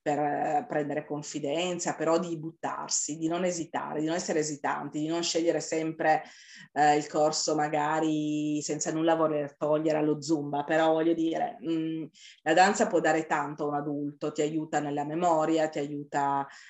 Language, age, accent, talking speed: Italian, 30-49, native, 160 wpm